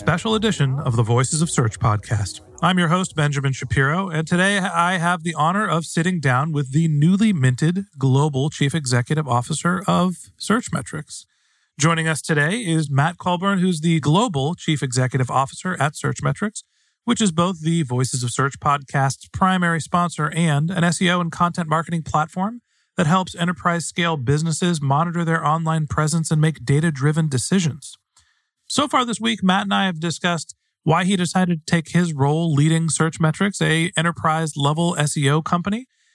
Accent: American